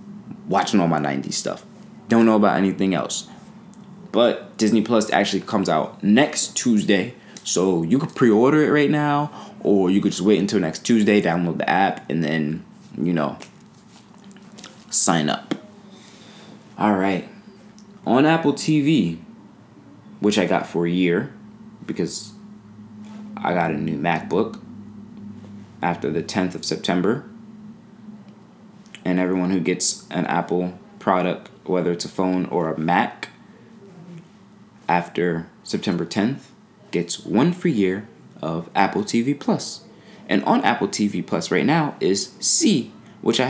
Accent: American